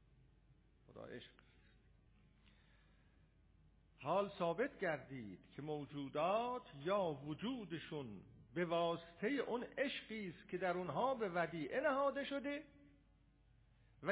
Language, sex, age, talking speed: English, male, 50-69, 80 wpm